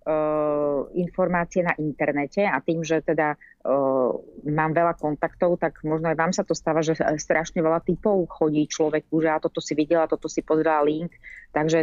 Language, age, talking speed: Slovak, 30-49, 180 wpm